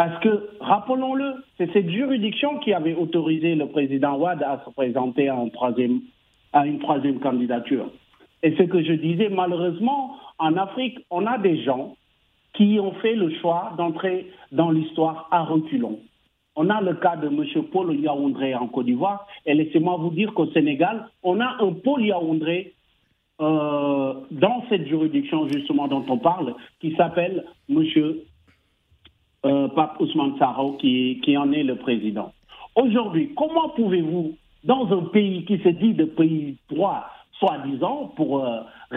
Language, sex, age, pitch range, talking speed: French, male, 50-69, 145-225 Hz, 155 wpm